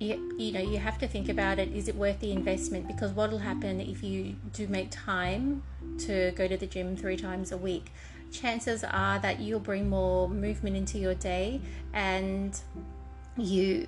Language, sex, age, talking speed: English, female, 30-49, 185 wpm